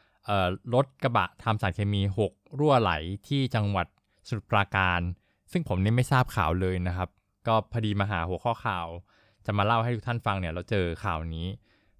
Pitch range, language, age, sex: 95-115 Hz, Thai, 20-39, male